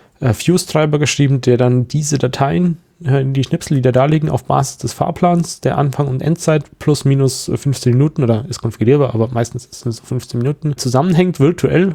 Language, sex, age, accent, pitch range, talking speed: German, male, 30-49, German, 120-145 Hz, 185 wpm